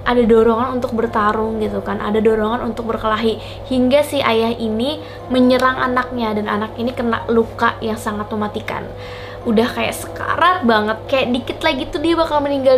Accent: native